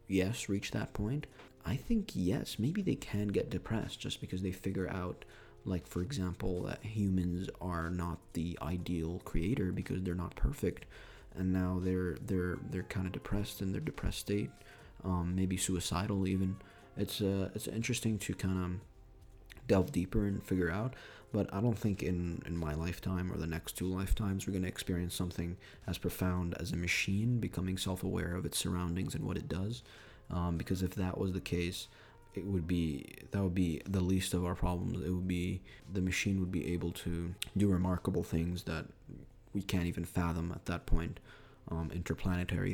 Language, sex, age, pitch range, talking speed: English, male, 20-39, 90-100 Hz, 185 wpm